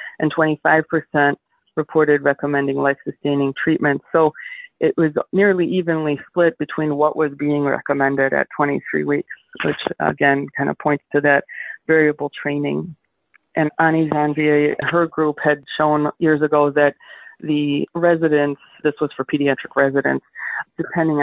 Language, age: English, 30-49